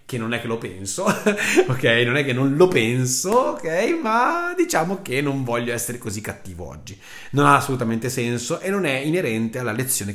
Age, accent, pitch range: 30-49, native, 110-150 Hz